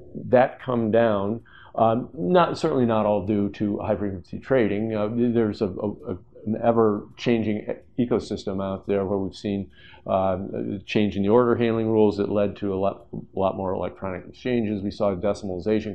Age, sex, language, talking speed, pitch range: 50-69, male, English, 175 wpm, 100-115 Hz